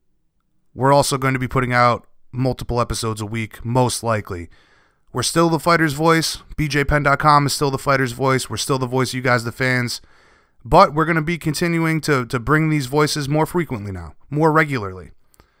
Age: 30-49